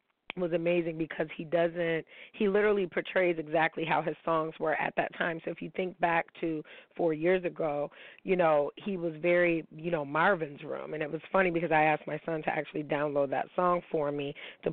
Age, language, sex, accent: 30-49, English, female, American